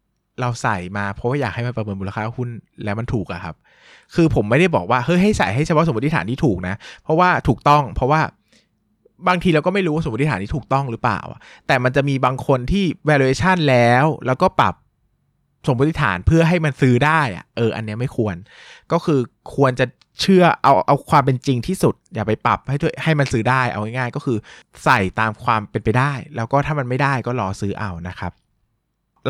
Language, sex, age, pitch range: Thai, male, 20-39, 110-145 Hz